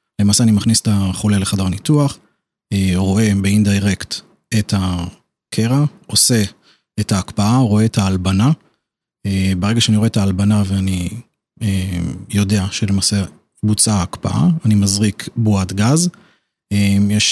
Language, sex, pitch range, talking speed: Hebrew, male, 100-115 Hz, 110 wpm